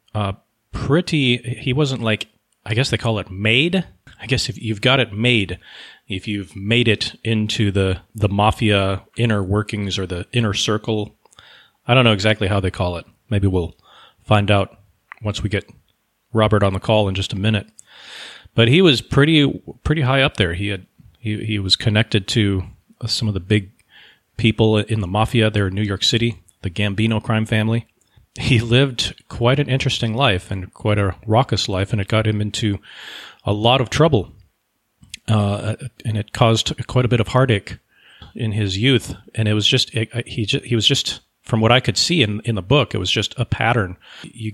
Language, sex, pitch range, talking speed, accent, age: English, male, 105-120 Hz, 195 wpm, American, 30-49